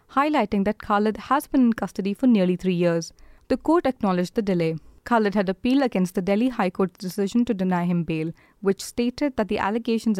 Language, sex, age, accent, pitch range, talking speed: English, female, 20-39, Indian, 185-235 Hz, 200 wpm